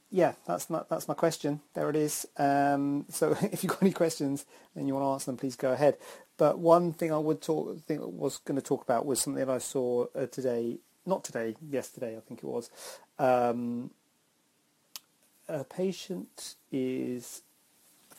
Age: 40-59